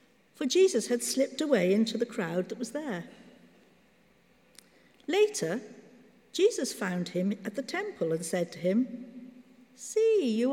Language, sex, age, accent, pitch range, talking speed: English, female, 60-79, British, 210-270 Hz, 135 wpm